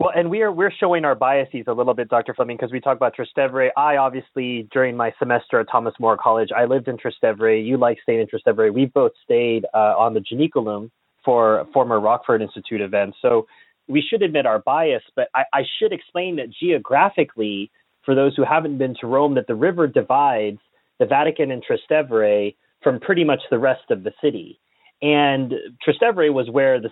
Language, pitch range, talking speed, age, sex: English, 125-165 Hz, 200 wpm, 30-49, male